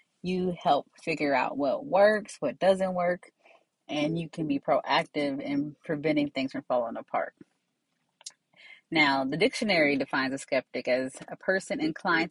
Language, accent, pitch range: English, American, 145-210 Hz